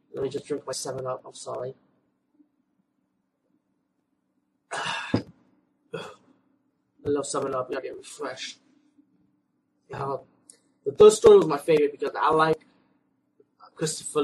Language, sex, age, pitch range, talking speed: English, male, 20-39, 135-170 Hz, 120 wpm